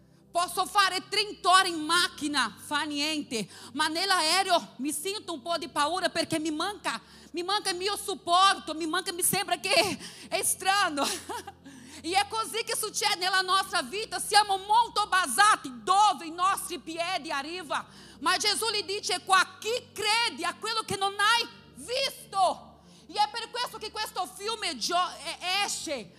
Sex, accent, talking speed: female, Brazilian, 155 wpm